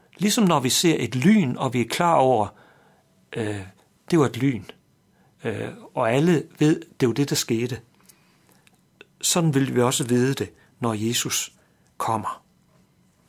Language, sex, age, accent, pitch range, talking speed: Danish, male, 60-79, native, 120-170 Hz, 160 wpm